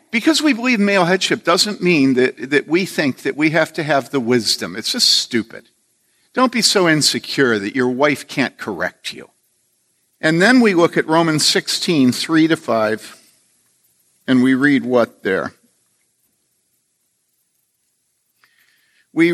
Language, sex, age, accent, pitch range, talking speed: English, male, 50-69, American, 135-185 Hz, 145 wpm